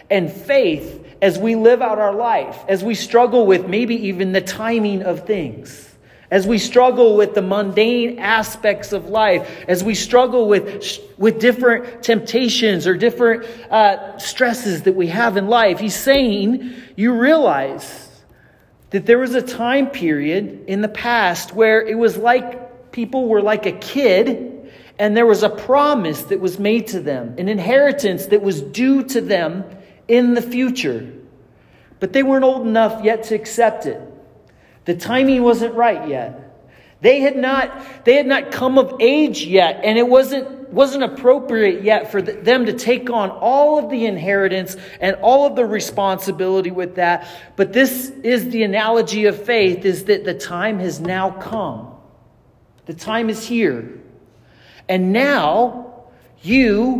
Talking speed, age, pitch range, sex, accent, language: 160 wpm, 40-59, 195-245 Hz, male, American, English